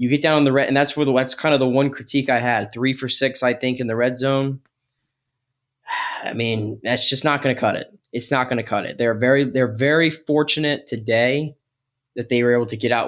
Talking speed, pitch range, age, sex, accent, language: 250 wpm, 120-135 Hz, 10-29, male, American, English